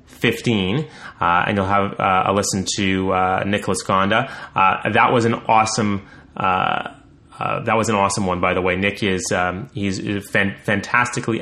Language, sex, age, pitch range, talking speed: English, male, 30-49, 100-115 Hz, 170 wpm